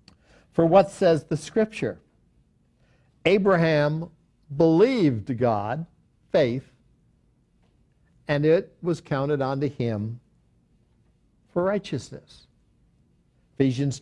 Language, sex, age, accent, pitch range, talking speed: English, male, 60-79, American, 130-170 Hz, 75 wpm